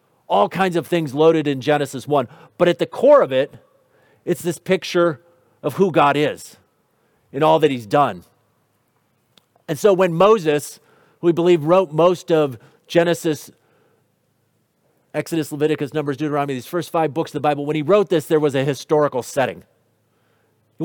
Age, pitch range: 40-59, 140-175 Hz